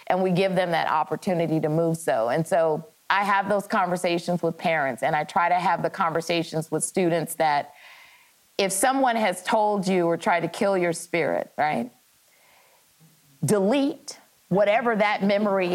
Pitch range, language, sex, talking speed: 175-215 Hz, English, female, 165 wpm